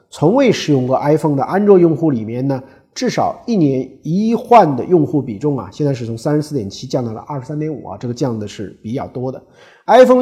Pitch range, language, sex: 110-150 Hz, Chinese, male